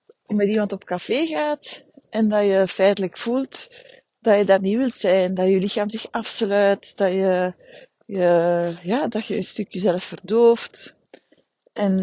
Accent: Dutch